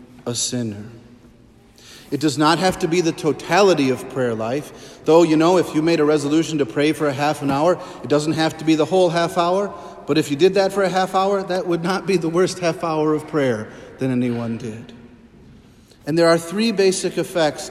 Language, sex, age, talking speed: English, male, 40-59, 220 wpm